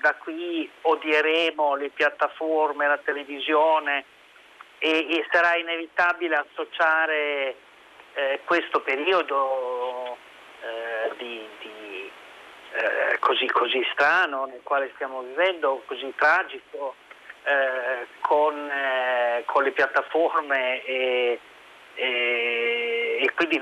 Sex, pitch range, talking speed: male, 140-165 Hz, 95 wpm